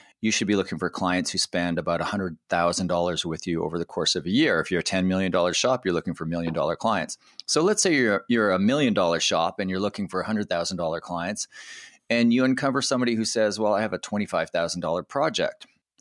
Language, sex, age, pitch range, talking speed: English, male, 30-49, 85-120 Hz, 205 wpm